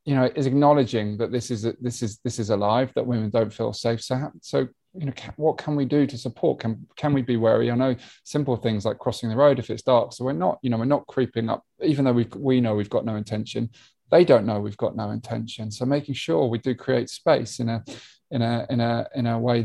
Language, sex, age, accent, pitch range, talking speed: English, male, 20-39, British, 115-130 Hz, 260 wpm